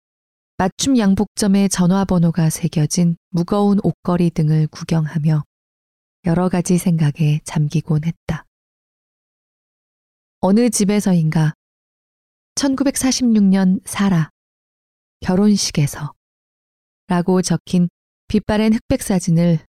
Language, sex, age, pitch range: Korean, female, 20-39, 155-200 Hz